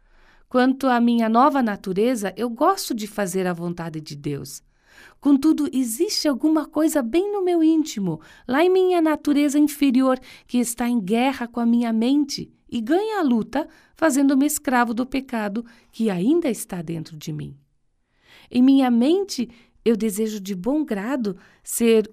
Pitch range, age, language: 200-285 Hz, 50-69, Portuguese